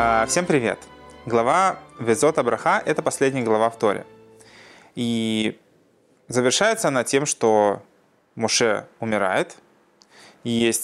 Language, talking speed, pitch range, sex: Russian, 105 wpm, 105-130 Hz, male